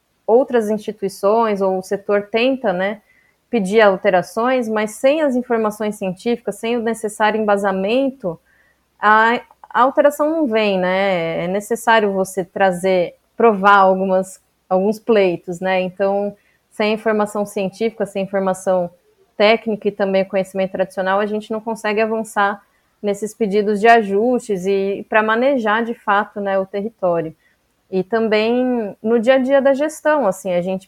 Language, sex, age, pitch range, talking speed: Portuguese, female, 20-39, 195-230 Hz, 140 wpm